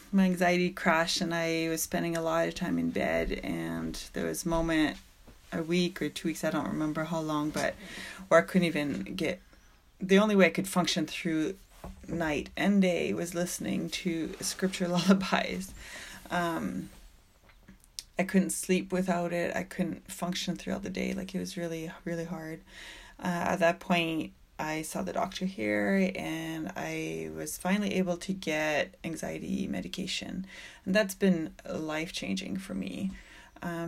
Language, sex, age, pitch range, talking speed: English, female, 30-49, 160-185 Hz, 165 wpm